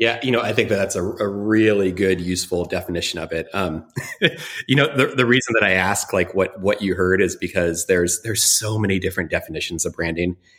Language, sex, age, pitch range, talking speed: English, male, 30-49, 90-115 Hz, 220 wpm